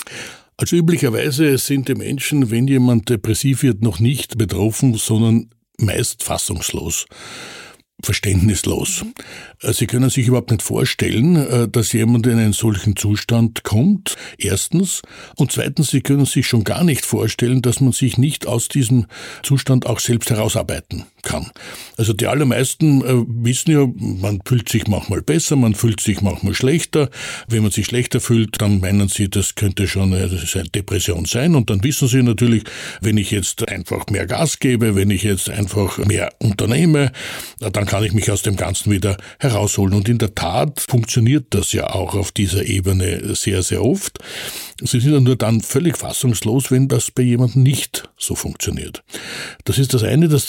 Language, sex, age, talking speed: German, male, 60-79, 165 wpm